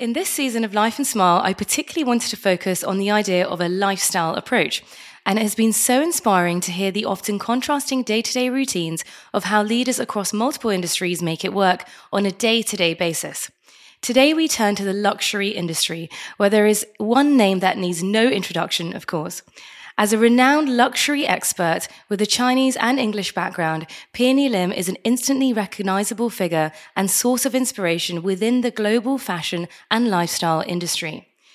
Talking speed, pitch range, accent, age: 175 wpm, 185-250 Hz, British, 20-39